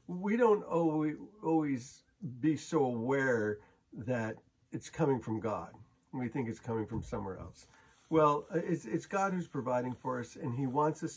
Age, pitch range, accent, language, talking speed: 50-69, 115-155 Hz, American, English, 155 wpm